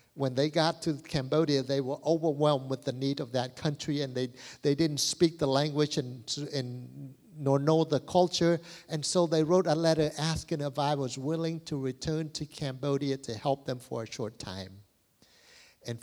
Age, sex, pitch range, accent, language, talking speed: 60-79, male, 115-145 Hz, American, English, 185 wpm